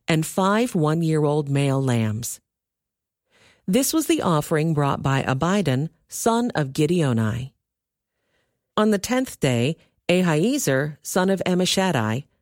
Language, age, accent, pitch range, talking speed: English, 40-59, American, 125-185 Hz, 110 wpm